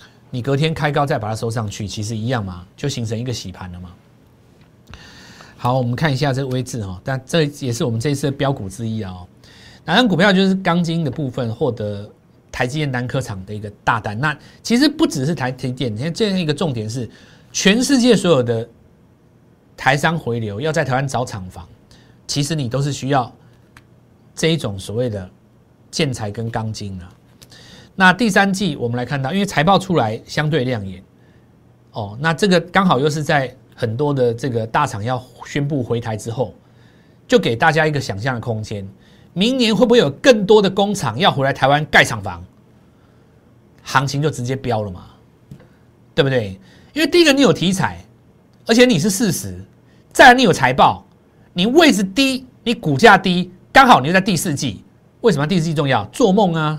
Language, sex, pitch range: Chinese, male, 115-170 Hz